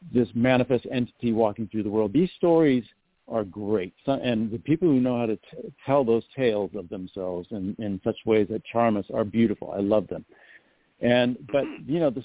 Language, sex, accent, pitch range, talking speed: English, male, American, 110-135 Hz, 200 wpm